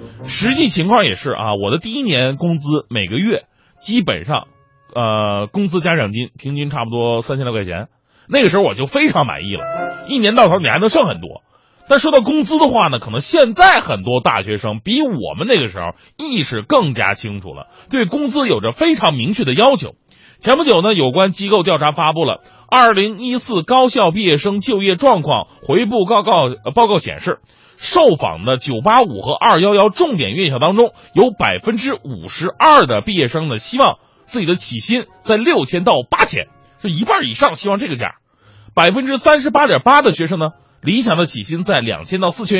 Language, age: Chinese, 30-49